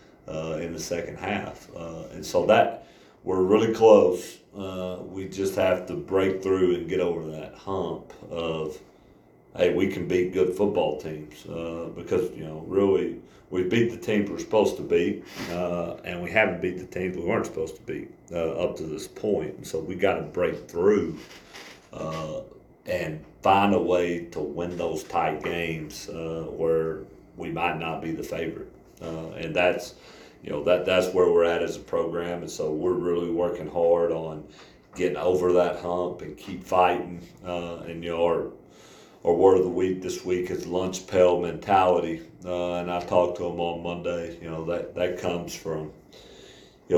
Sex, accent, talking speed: male, American, 185 wpm